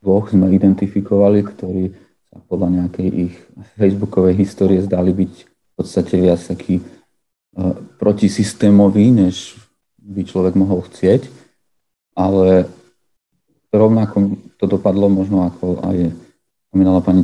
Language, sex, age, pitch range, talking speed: Slovak, male, 40-59, 90-100 Hz, 110 wpm